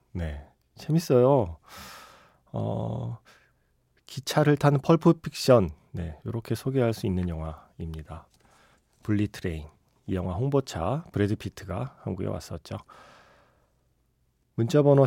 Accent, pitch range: native, 95-135 Hz